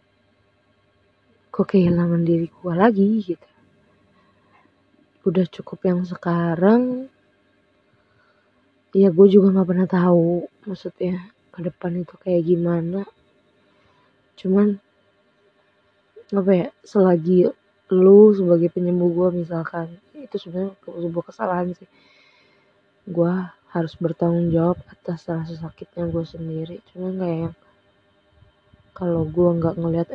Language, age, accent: Indonesian, 20-39, native